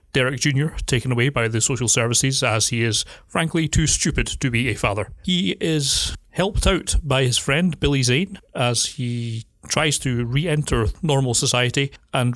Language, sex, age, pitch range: English, male, 30-49, 115-140 Hz